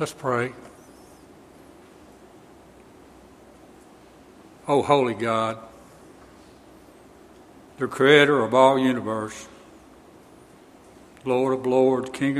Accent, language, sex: American, English, male